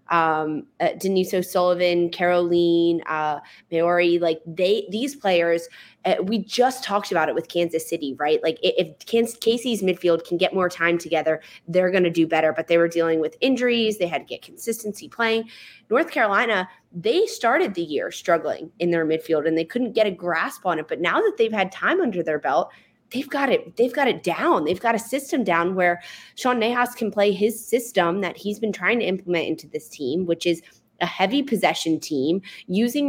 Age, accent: 20-39, American